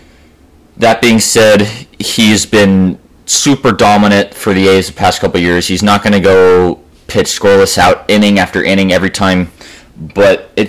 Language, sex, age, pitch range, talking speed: English, male, 20-39, 90-105 Hz, 165 wpm